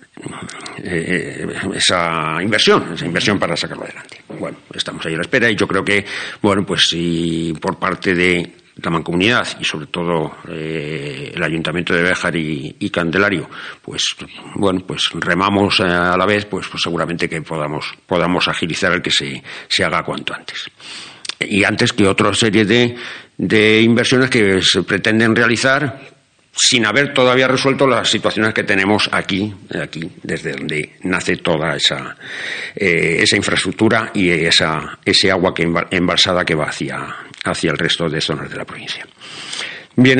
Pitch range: 85-110 Hz